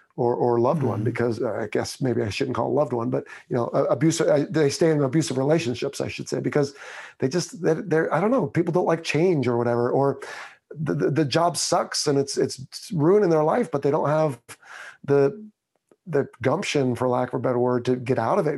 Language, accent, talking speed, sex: English, American, 235 wpm, male